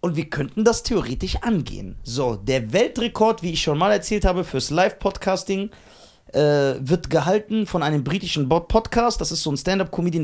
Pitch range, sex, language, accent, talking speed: 135-215 Hz, male, German, German, 165 wpm